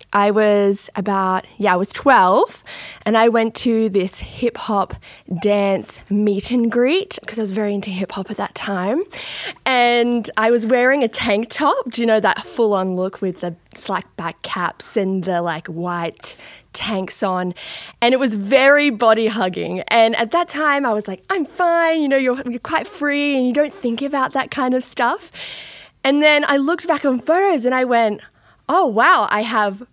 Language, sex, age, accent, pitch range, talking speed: English, female, 10-29, Australian, 195-260 Hz, 195 wpm